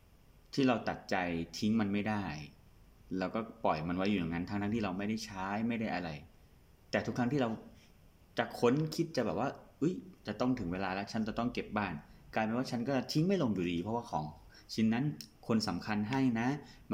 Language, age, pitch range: Thai, 20-39, 85-115 Hz